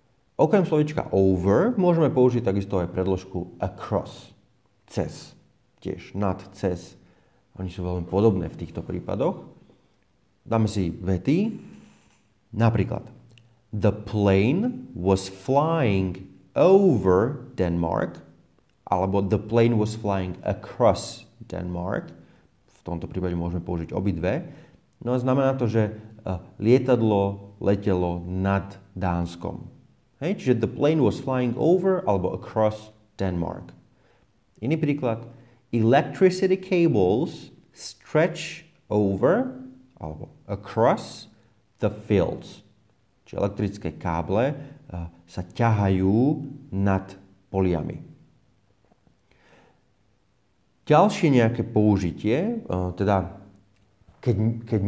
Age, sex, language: 30-49, male, Slovak